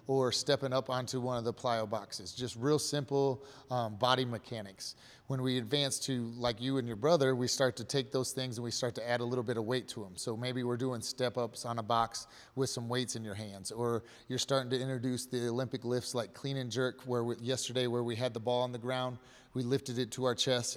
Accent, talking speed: American, 245 wpm